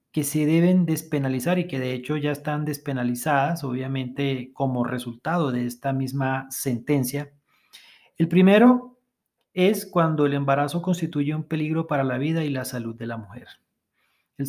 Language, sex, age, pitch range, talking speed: Spanish, male, 40-59, 135-175 Hz, 155 wpm